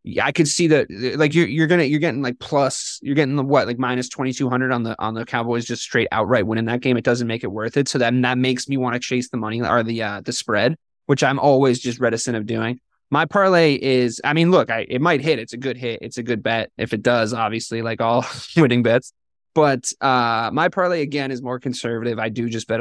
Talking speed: 265 wpm